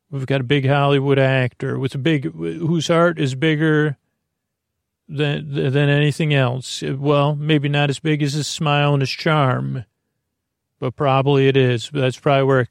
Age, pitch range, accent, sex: 40-59, 125-145 Hz, American, male